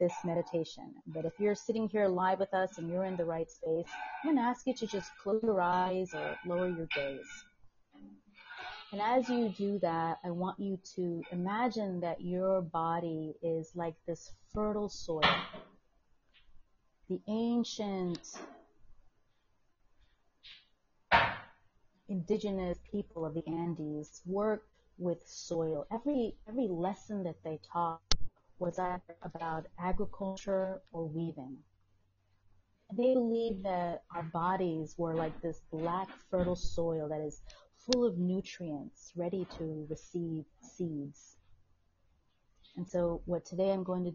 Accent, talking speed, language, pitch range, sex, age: American, 130 wpm, English, 155-190 Hz, female, 30-49